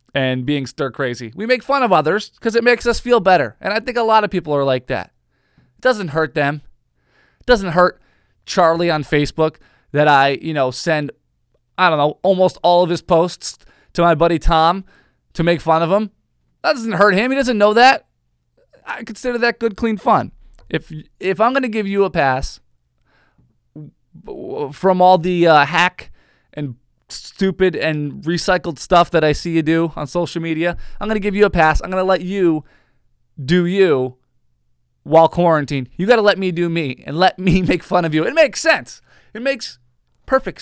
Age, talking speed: 20-39, 195 wpm